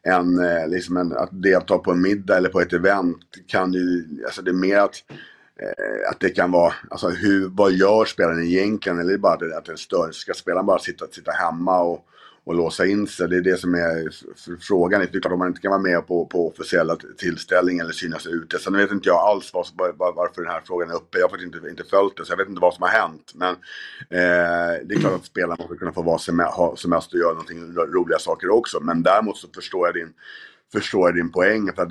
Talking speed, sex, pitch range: 245 wpm, male, 85-100 Hz